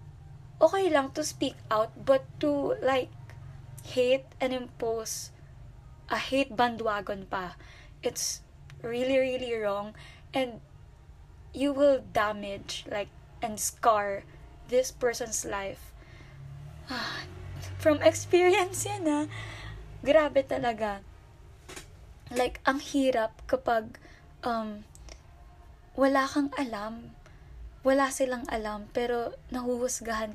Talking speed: 100 wpm